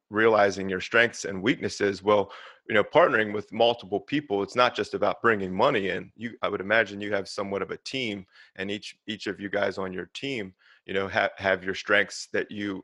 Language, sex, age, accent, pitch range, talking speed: English, male, 30-49, American, 95-110 Hz, 210 wpm